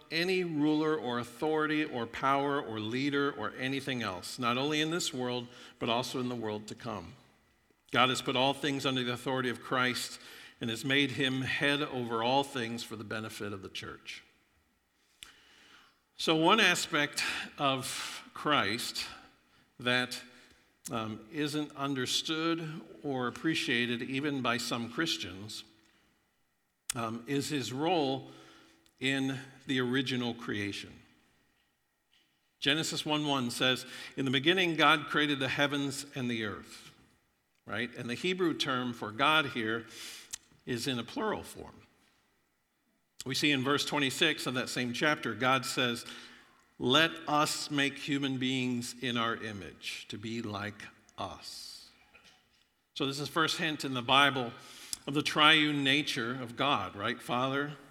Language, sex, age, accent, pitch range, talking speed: English, male, 50-69, American, 120-145 Hz, 140 wpm